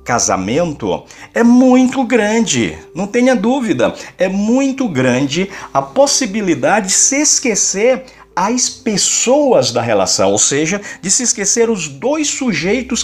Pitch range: 160-250 Hz